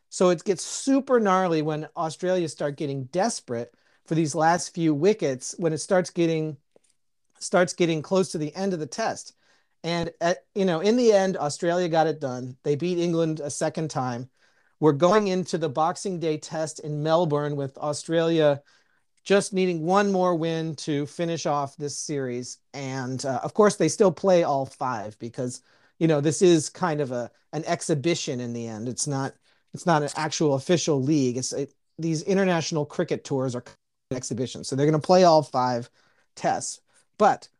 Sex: male